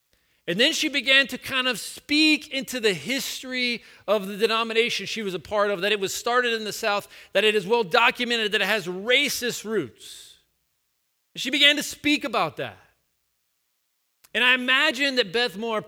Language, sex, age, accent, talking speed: English, male, 40-59, American, 185 wpm